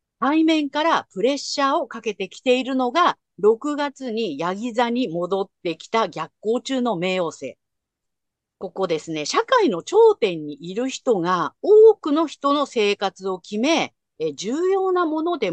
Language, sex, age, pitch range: Japanese, female, 50-69, 195-325 Hz